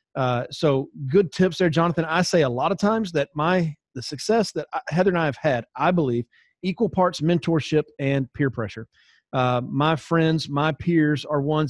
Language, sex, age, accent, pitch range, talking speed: English, male, 40-59, American, 135-170 Hz, 195 wpm